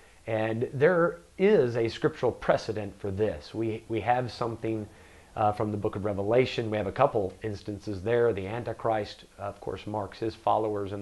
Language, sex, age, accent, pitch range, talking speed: English, male, 40-59, American, 100-120 Hz, 180 wpm